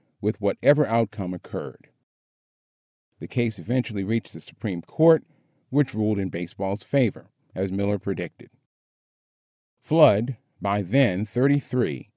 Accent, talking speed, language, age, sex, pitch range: American, 115 wpm, English, 40-59, male, 95-130 Hz